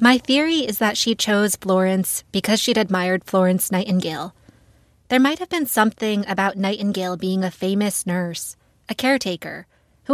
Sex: female